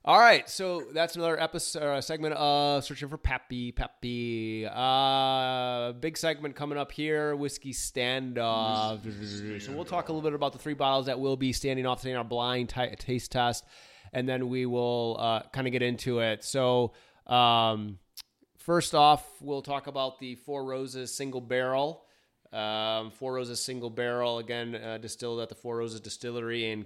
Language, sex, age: English, male, 30-49